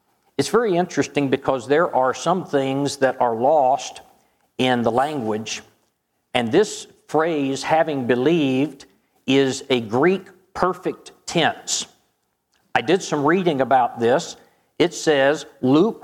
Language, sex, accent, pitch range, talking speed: English, male, American, 130-155 Hz, 125 wpm